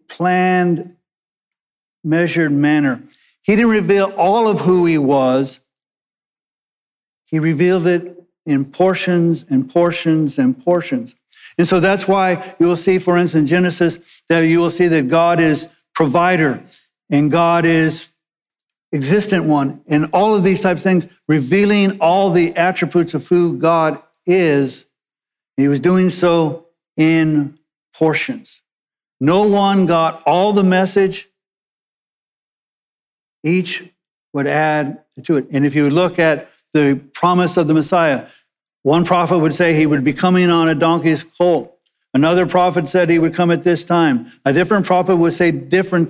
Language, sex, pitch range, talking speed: English, male, 155-180 Hz, 145 wpm